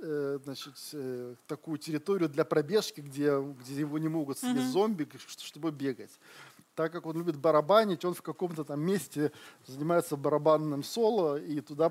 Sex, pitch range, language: male, 135-160 Hz, Russian